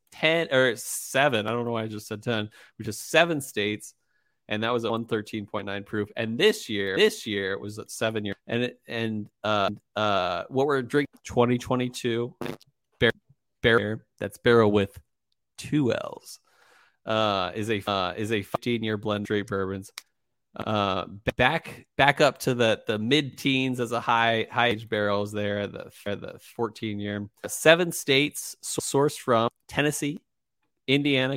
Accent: American